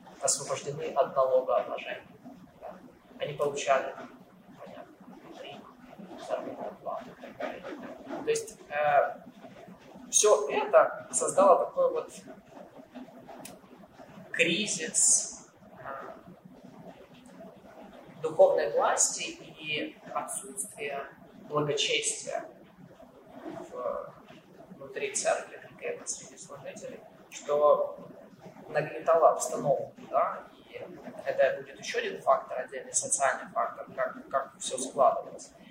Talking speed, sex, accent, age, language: 80 wpm, male, native, 20-39, Russian